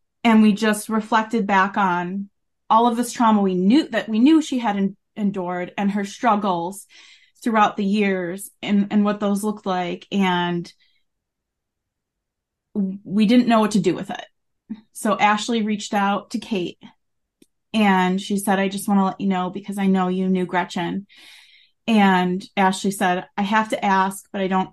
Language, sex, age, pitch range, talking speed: English, female, 30-49, 180-210 Hz, 175 wpm